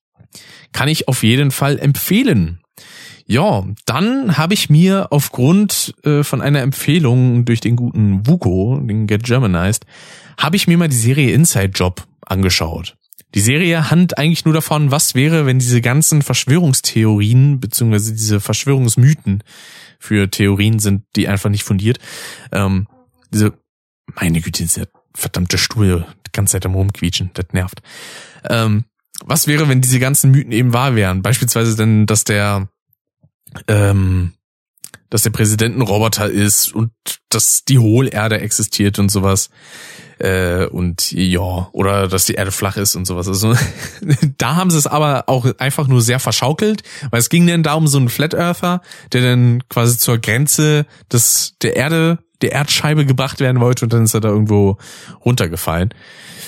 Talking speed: 155 wpm